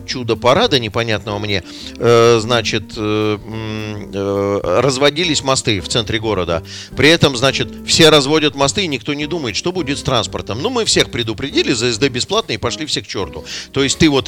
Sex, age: male, 40-59